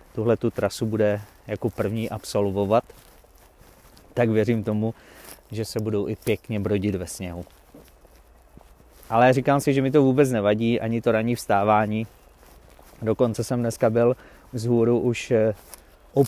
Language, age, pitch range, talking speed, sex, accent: Czech, 30-49, 105-130 Hz, 135 wpm, male, native